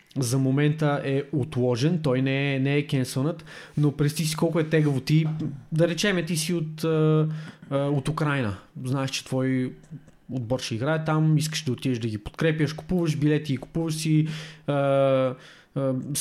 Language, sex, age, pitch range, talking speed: Bulgarian, male, 20-39, 135-160 Hz, 170 wpm